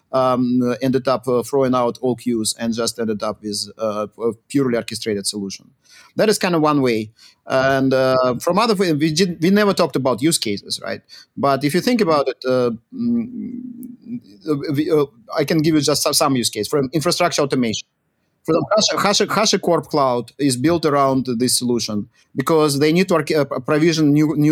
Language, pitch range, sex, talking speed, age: English, 125-160 Hz, male, 180 wpm, 30-49